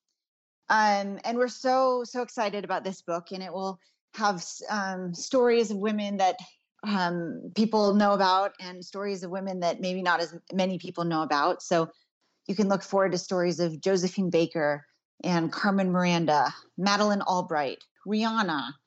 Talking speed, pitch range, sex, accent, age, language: 160 wpm, 180-225 Hz, female, American, 30-49, English